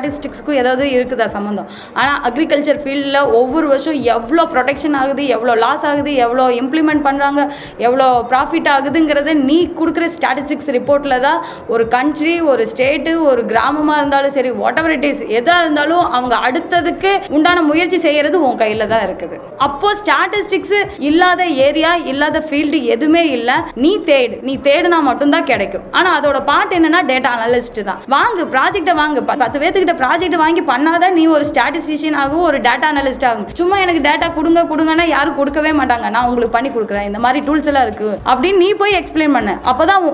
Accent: native